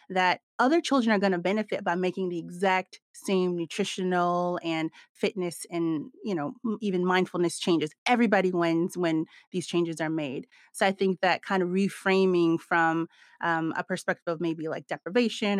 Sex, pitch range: female, 175-215 Hz